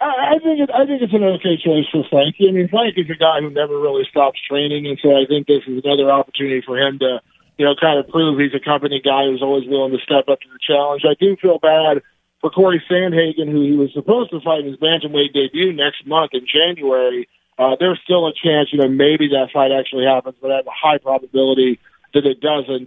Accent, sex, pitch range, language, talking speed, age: American, male, 140-160 Hz, English, 240 wpm, 40-59